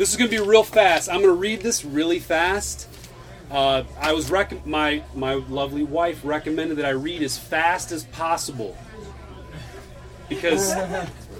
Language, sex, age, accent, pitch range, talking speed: English, male, 30-49, American, 150-205 Hz, 155 wpm